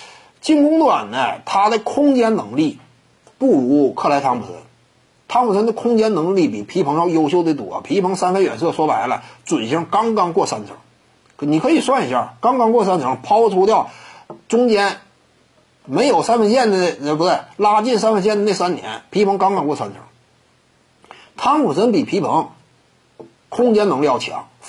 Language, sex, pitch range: Chinese, male, 165-240 Hz